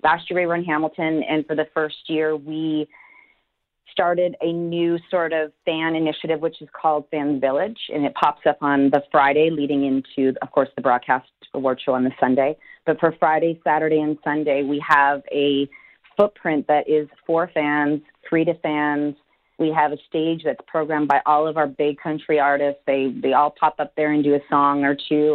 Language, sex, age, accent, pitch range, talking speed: English, female, 30-49, American, 145-160 Hz, 200 wpm